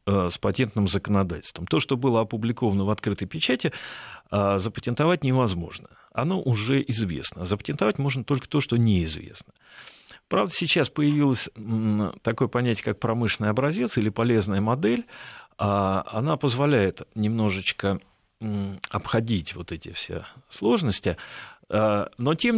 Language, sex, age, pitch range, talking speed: Russian, male, 40-59, 100-135 Hz, 110 wpm